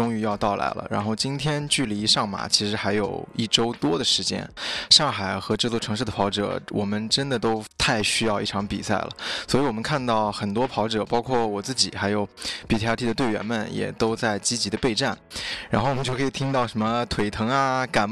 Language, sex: Chinese, male